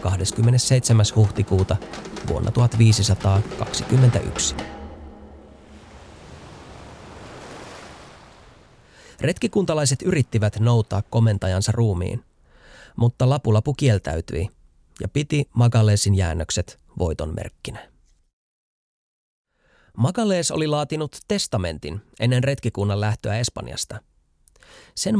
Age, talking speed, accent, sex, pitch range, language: 20-39, 60 wpm, native, male, 95-130 Hz, Finnish